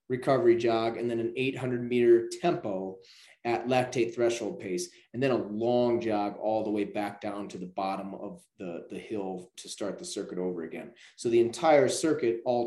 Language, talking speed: English, 190 wpm